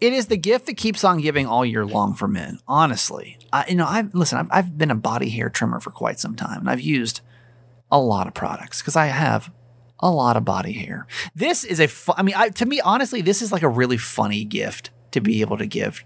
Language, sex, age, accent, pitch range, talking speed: English, male, 30-49, American, 120-180 Hz, 260 wpm